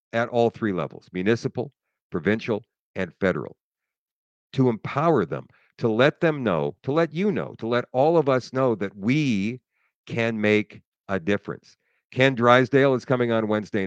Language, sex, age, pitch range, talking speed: English, male, 50-69, 110-135 Hz, 160 wpm